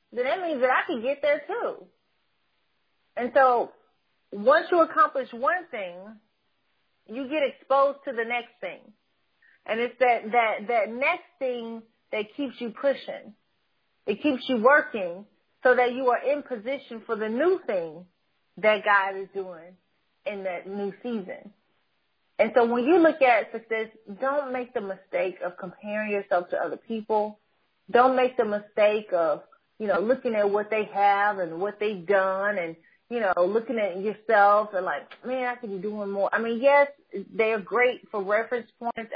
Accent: American